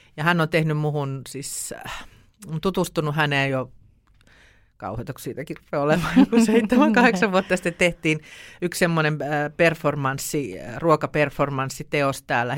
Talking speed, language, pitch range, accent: 105 wpm, Finnish, 145-165 Hz, native